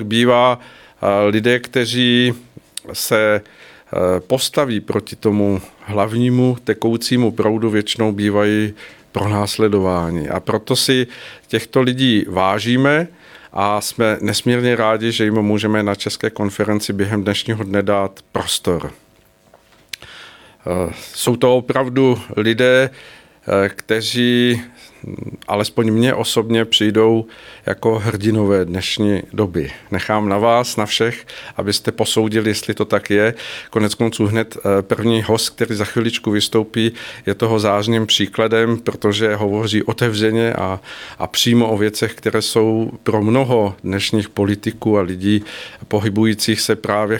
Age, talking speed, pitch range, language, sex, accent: 50-69, 115 wpm, 105-120 Hz, Czech, male, native